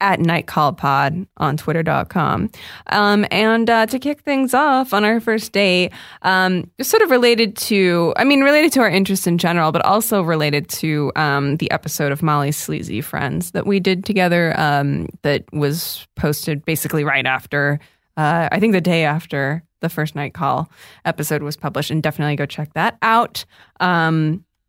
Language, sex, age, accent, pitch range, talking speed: English, female, 20-39, American, 150-195 Hz, 170 wpm